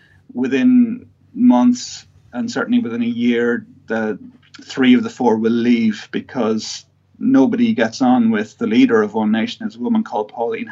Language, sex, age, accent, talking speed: English, male, 30-49, Irish, 160 wpm